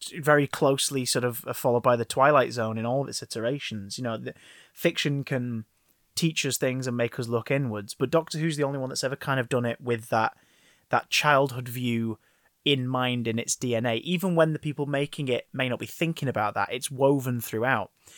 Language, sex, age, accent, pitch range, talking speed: English, male, 20-39, British, 120-150 Hz, 210 wpm